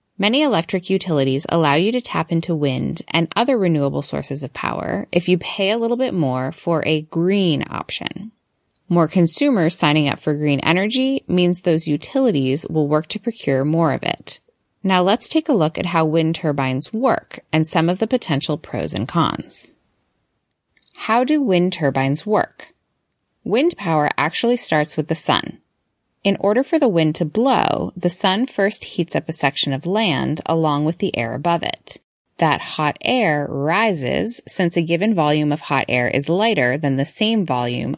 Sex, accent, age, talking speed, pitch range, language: female, American, 20-39, 175 wpm, 150-205 Hz, English